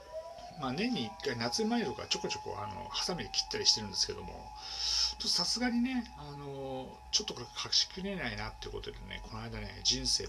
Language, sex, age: Japanese, male, 60-79